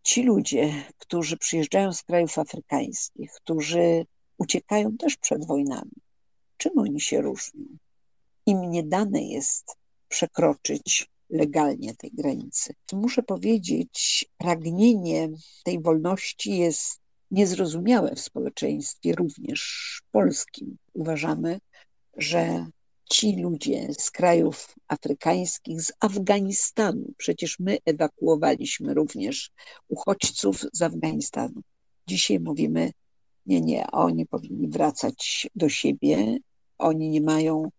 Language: Polish